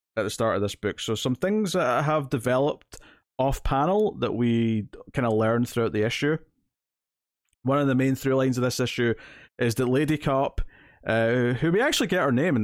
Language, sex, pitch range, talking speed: English, male, 110-140 Hz, 200 wpm